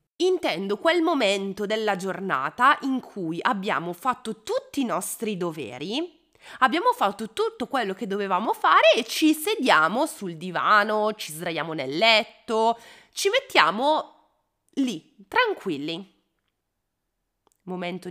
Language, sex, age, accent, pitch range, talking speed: Italian, female, 30-49, native, 225-340 Hz, 115 wpm